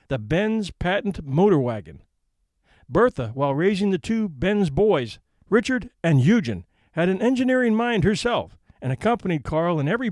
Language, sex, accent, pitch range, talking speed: English, male, American, 140-205 Hz, 150 wpm